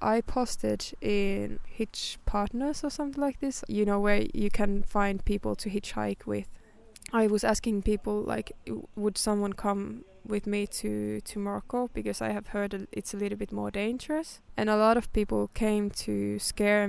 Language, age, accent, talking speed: English, 20-39, Norwegian, 180 wpm